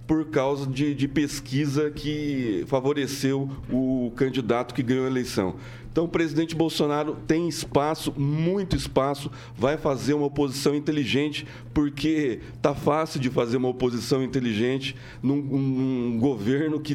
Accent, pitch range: Brazilian, 130-150 Hz